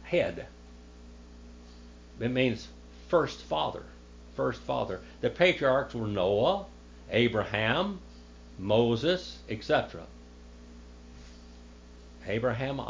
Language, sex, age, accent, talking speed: English, male, 60-79, American, 70 wpm